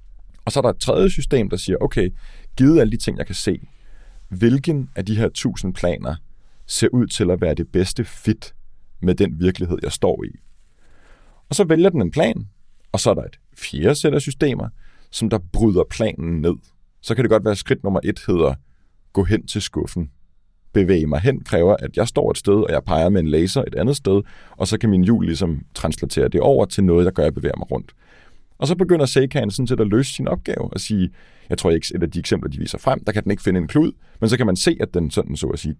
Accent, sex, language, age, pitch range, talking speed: native, male, Danish, 30-49, 90-130 Hz, 240 wpm